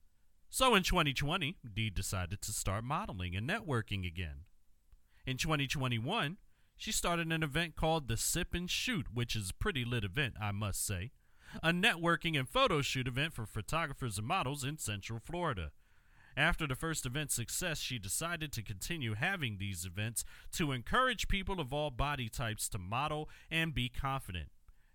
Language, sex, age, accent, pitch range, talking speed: English, male, 40-59, American, 110-170 Hz, 165 wpm